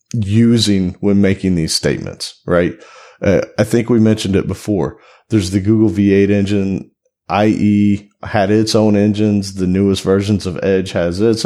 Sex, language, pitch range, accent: male, English, 95-115 Hz, American